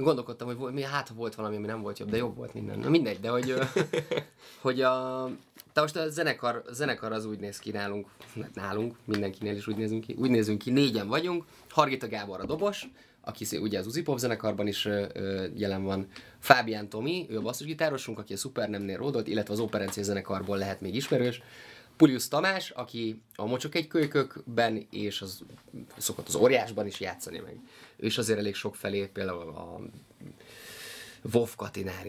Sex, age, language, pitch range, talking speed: male, 20-39, Hungarian, 105-125 Hz, 175 wpm